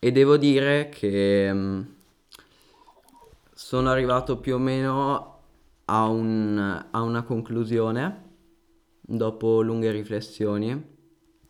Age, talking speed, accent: 20-39, 85 wpm, native